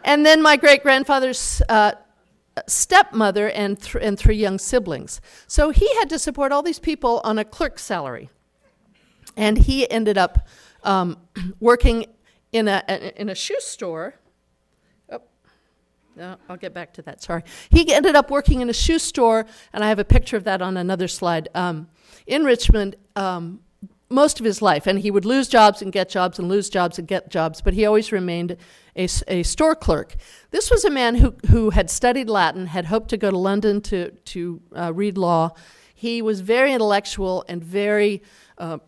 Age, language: 50-69, English